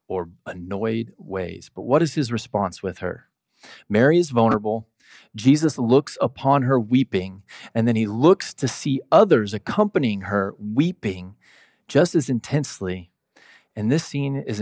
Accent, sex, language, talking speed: American, male, English, 145 wpm